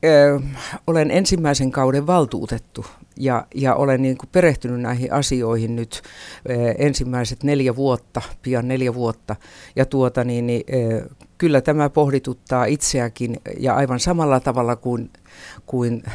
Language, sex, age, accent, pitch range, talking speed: Finnish, female, 60-79, native, 110-140 Hz, 105 wpm